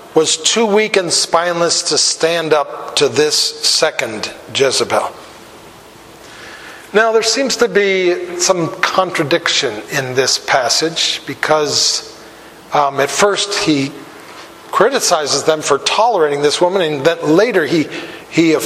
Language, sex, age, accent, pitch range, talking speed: English, male, 40-59, American, 160-205 Hz, 120 wpm